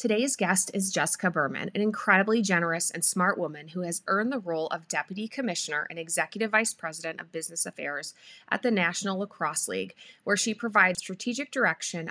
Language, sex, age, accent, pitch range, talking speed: English, female, 20-39, American, 165-215 Hz, 180 wpm